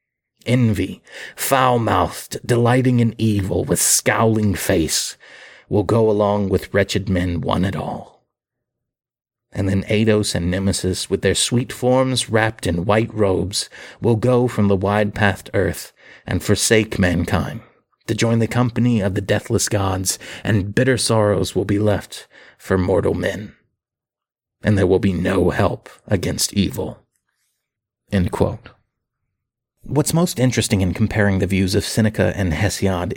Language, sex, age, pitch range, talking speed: English, male, 30-49, 95-120 Hz, 140 wpm